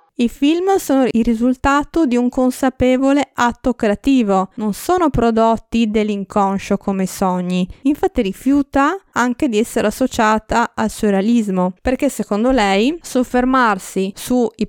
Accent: native